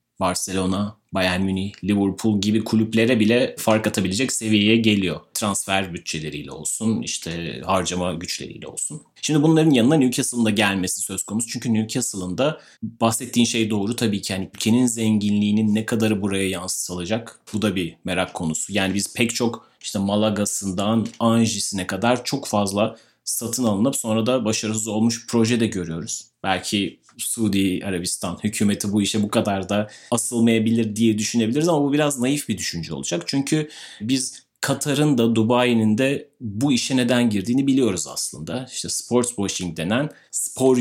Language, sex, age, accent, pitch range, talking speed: Turkish, male, 30-49, native, 100-120 Hz, 150 wpm